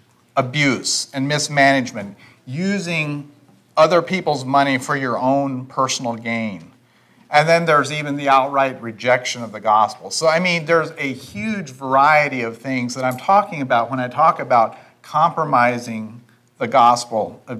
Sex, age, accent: male, 40-59, American